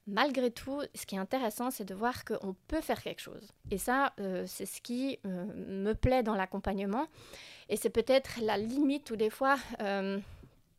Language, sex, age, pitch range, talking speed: French, female, 30-49, 200-240 Hz, 190 wpm